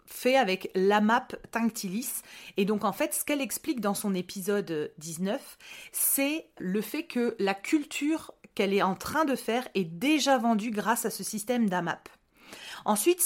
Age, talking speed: 30-49, 165 wpm